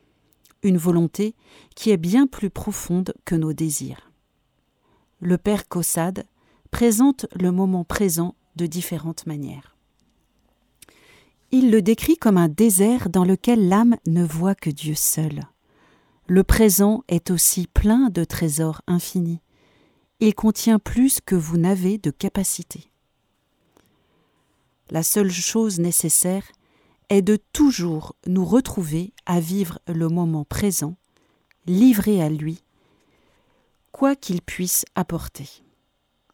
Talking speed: 120 wpm